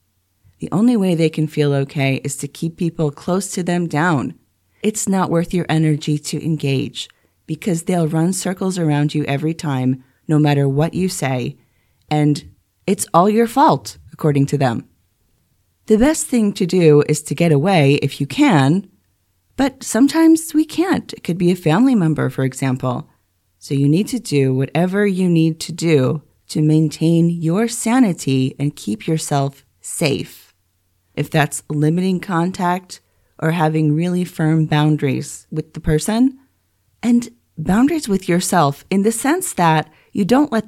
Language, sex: English, female